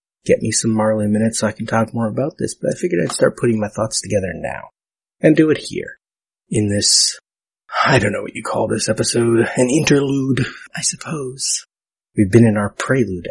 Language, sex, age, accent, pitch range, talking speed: English, male, 30-49, American, 105-130 Hz, 205 wpm